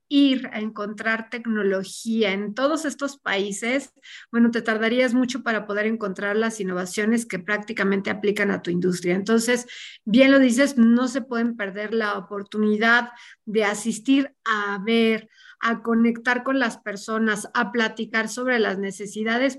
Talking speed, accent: 145 wpm, Mexican